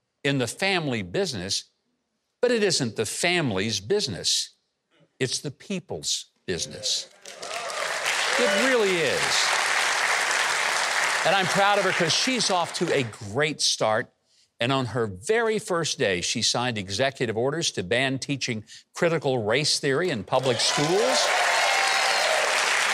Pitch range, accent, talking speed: 125-190 Hz, American, 125 wpm